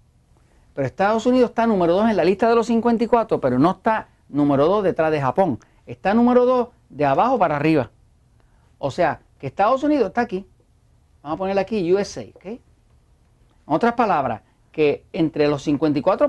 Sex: male